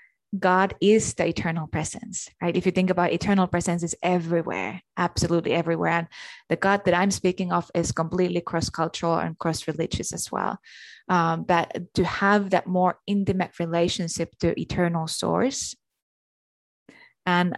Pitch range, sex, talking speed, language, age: 165-185 Hz, female, 145 wpm, English, 20-39